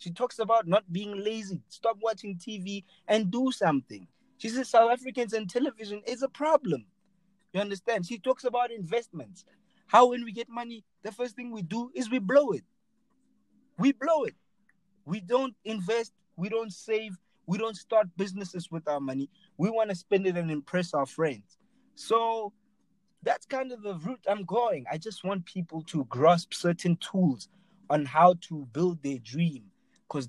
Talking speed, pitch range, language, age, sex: 175 wpm, 170-230 Hz, English, 30-49, male